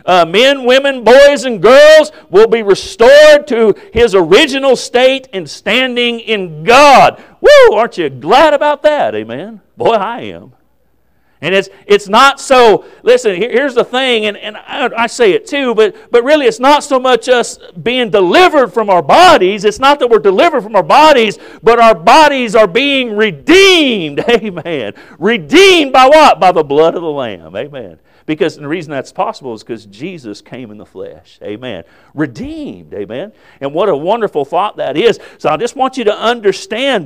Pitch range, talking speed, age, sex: 170-275 Hz, 180 wpm, 50-69, male